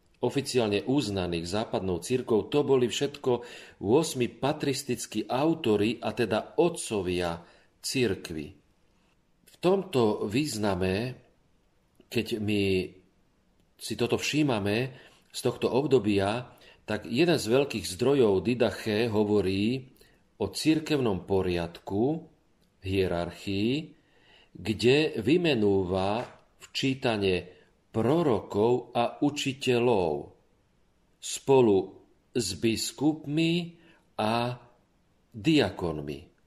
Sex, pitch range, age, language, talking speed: male, 100-135 Hz, 40-59, Slovak, 75 wpm